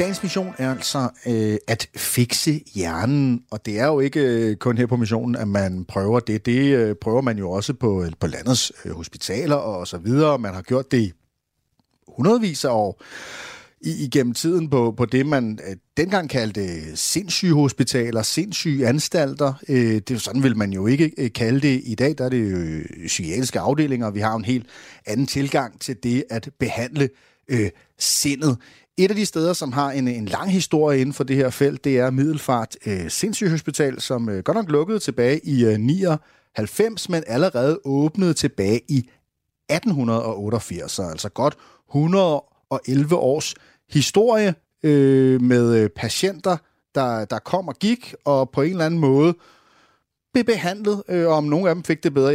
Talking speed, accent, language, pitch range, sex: 175 wpm, native, Danish, 115-155 Hz, male